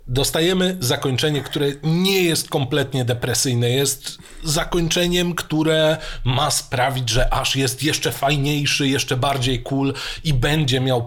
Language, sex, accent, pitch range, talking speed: Polish, male, native, 125-165 Hz, 125 wpm